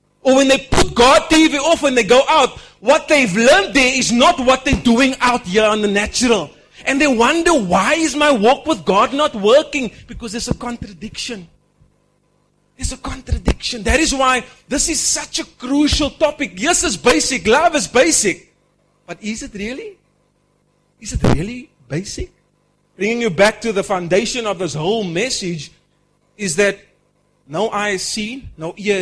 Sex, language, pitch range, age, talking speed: male, English, 190-270 Hz, 30-49, 175 wpm